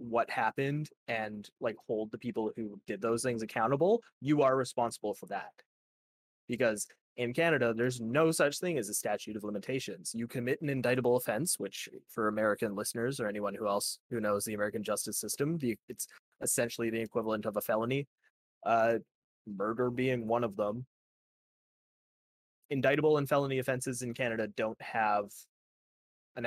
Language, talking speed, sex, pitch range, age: English, 160 wpm, male, 110-125 Hz, 20-39